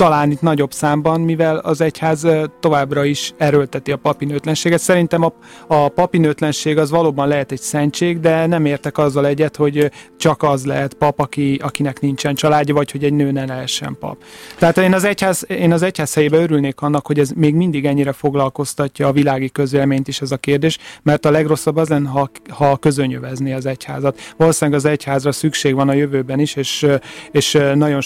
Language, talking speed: Hungarian, 180 wpm